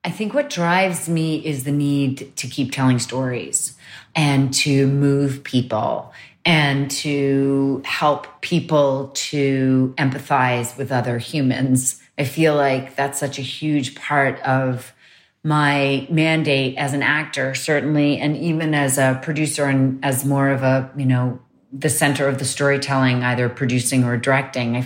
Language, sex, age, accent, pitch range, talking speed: English, female, 30-49, American, 130-150 Hz, 150 wpm